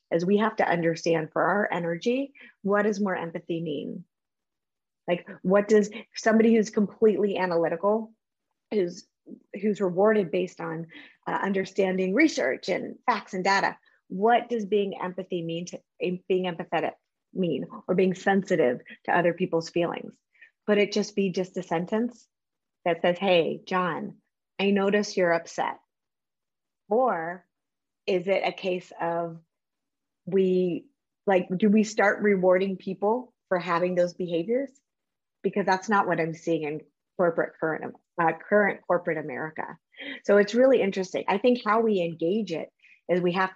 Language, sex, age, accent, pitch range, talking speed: English, female, 30-49, American, 170-210 Hz, 145 wpm